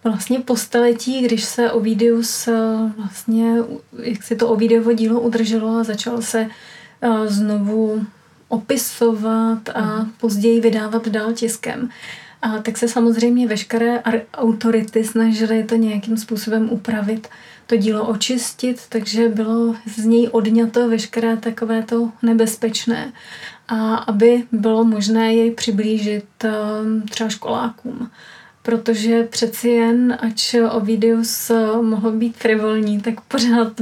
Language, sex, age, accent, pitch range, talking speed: Czech, female, 30-49, native, 220-230 Hz, 115 wpm